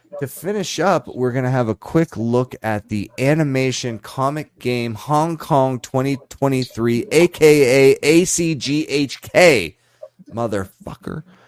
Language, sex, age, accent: English, male, 20-39, American